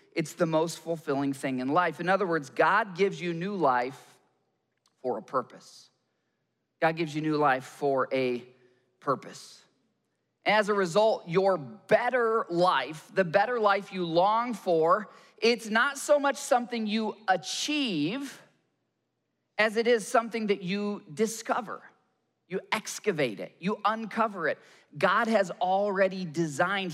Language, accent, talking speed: English, American, 140 wpm